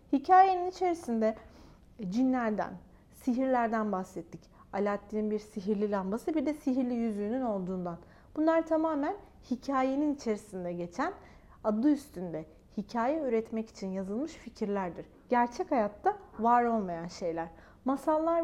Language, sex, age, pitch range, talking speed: Turkish, female, 40-59, 215-295 Hz, 105 wpm